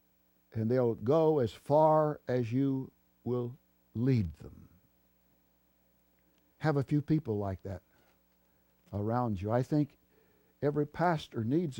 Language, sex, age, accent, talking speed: English, male, 60-79, American, 115 wpm